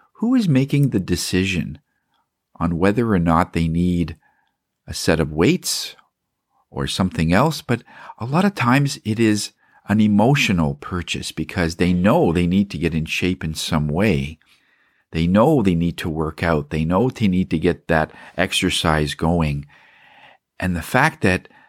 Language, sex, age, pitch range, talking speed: English, male, 50-69, 80-105 Hz, 165 wpm